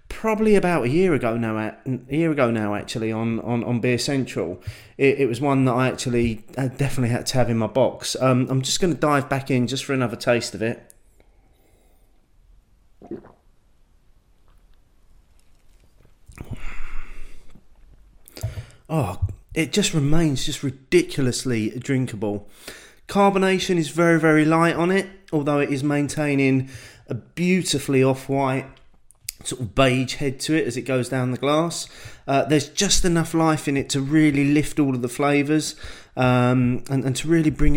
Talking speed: 155 wpm